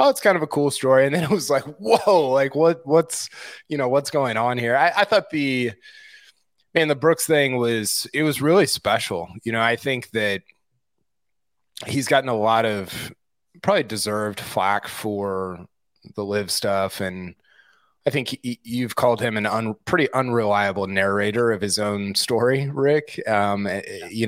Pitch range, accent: 105-145 Hz, American